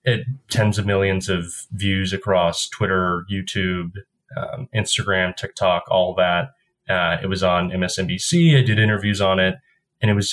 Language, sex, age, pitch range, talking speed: English, male, 20-39, 95-125 Hz, 155 wpm